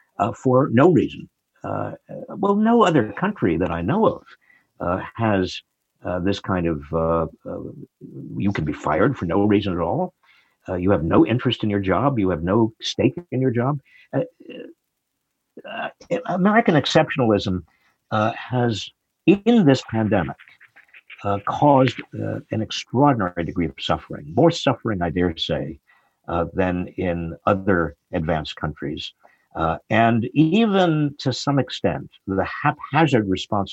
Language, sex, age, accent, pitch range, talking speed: English, male, 50-69, American, 90-150 Hz, 150 wpm